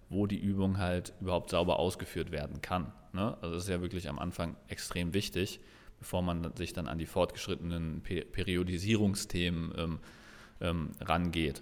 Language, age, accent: German, 30-49, German